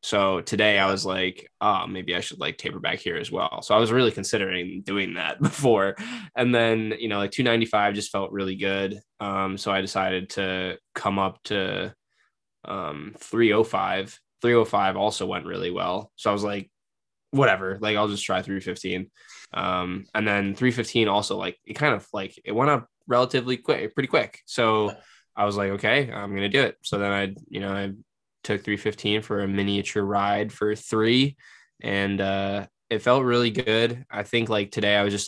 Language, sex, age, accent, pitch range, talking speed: English, male, 10-29, American, 95-110 Hz, 200 wpm